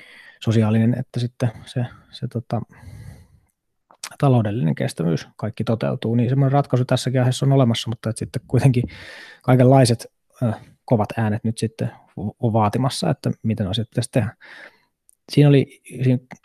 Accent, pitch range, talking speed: native, 110-130 Hz, 125 wpm